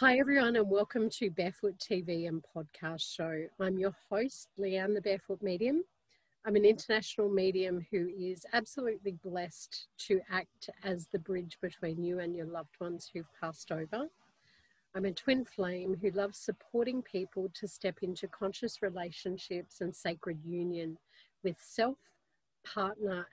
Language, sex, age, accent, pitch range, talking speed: English, female, 40-59, Australian, 175-210 Hz, 150 wpm